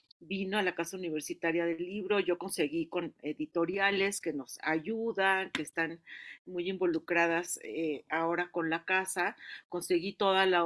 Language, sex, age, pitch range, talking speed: Spanish, female, 40-59, 165-200 Hz, 145 wpm